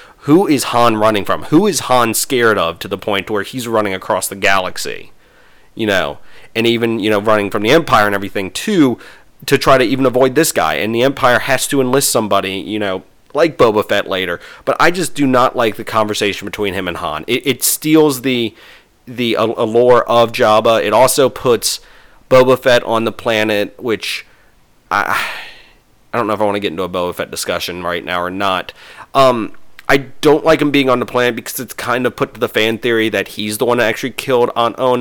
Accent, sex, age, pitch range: American, male, 30-49, 110-130 Hz